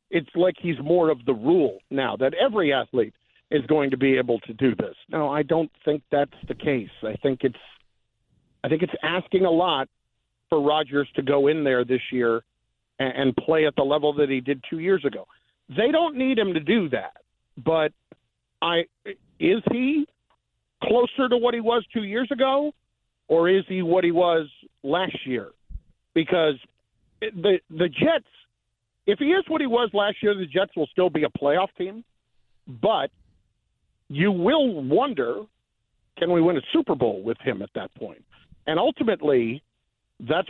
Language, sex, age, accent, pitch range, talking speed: English, male, 50-69, American, 135-195 Hz, 175 wpm